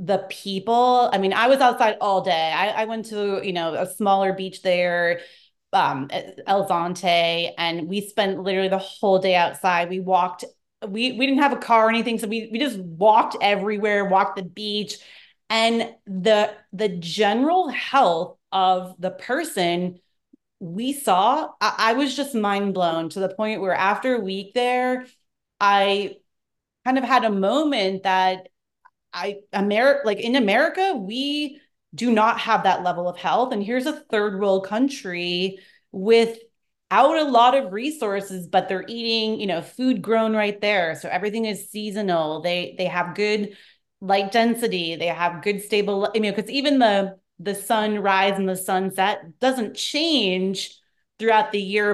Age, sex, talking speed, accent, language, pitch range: 30-49, female, 170 wpm, American, English, 185-230 Hz